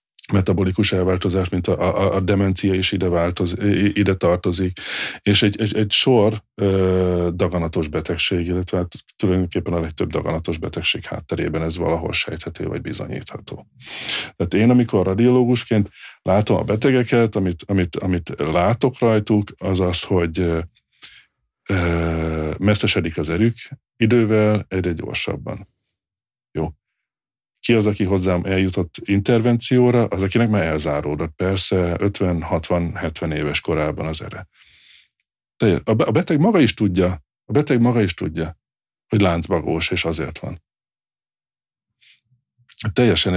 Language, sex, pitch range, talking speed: Hungarian, male, 85-110 Hz, 120 wpm